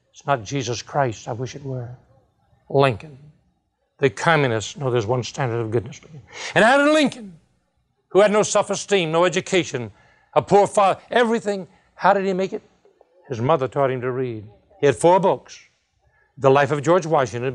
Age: 60-79